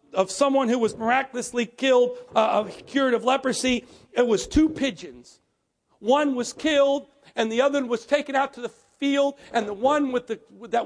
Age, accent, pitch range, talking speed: 50-69, American, 240-295 Hz, 180 wpm